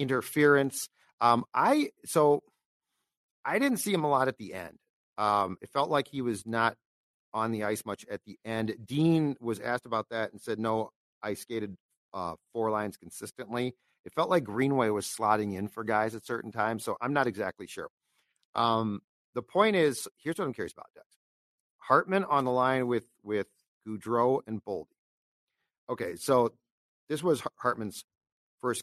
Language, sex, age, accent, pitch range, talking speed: English, male, 40-59, American, 105-130 Hz, 175 wpm